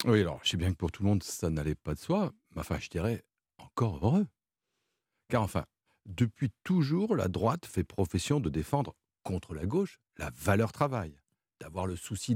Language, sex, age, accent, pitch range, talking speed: French, male, 60-79, French, 90-150 Hz, 195 wpm